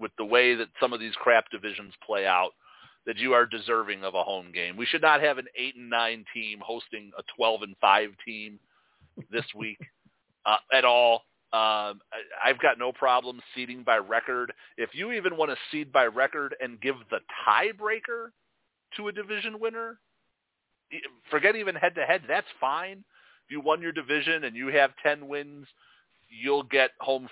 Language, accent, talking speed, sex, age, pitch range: English, American, 180 wpm, male, 40-59, 115-155 Hz